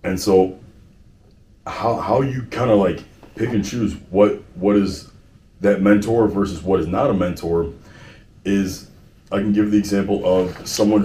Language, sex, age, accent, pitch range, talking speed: English, male, 30-49, American, 90-105 Hz, 165 wpm